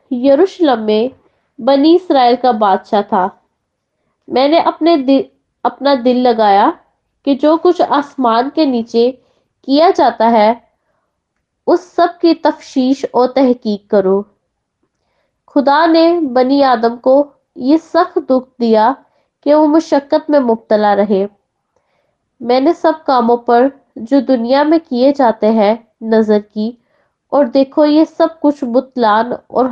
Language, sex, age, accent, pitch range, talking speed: Hindi, female, 20-39, native, 230-290 Hz, 125 wpm